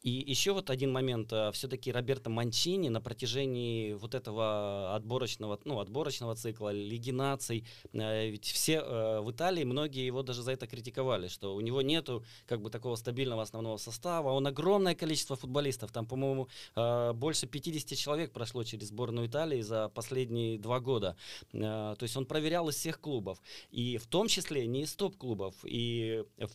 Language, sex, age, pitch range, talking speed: Russian, male, 20-39, 115-140 Hz, 160 wpm